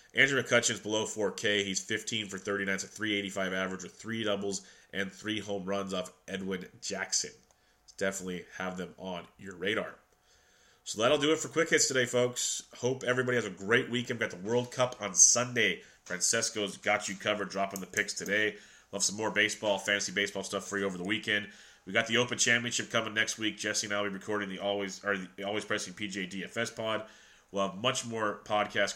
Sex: male